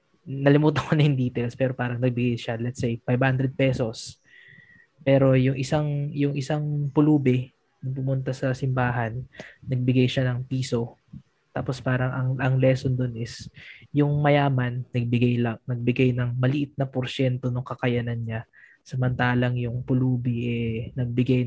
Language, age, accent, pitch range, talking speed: Filipino, 20-39, native, 120-135 Hz, 145 wpm